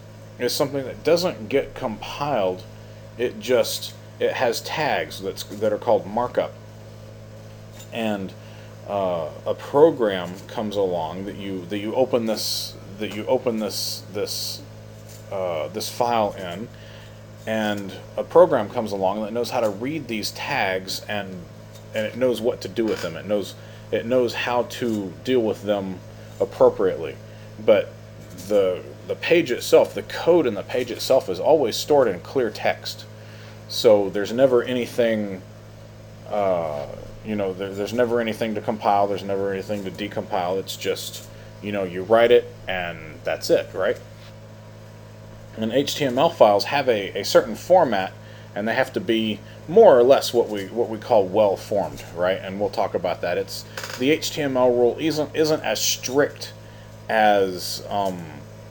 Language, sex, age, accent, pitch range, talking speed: English, male, 30-49, American, 105-115 Hz, 155 wpm